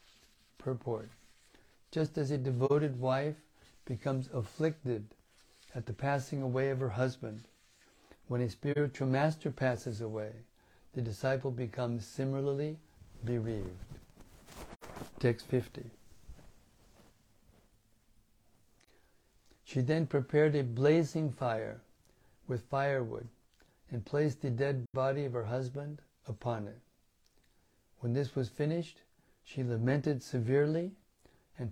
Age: 60-79